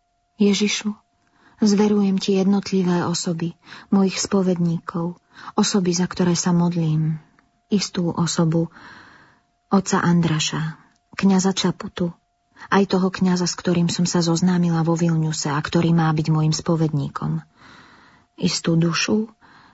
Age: 30-49